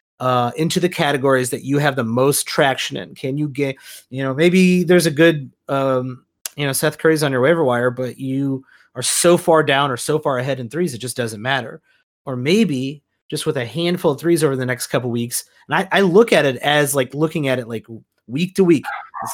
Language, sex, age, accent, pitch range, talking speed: English, male, 30-49, American, 130-175 Hz, 235 wpm